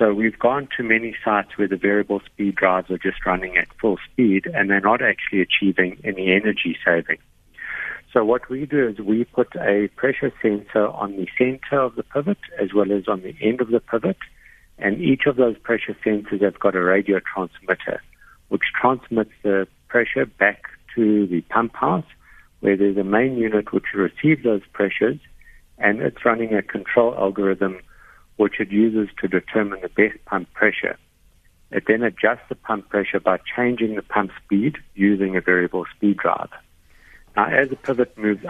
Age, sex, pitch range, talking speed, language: 60-79, male, 95-115 Hz, 180 wpm, English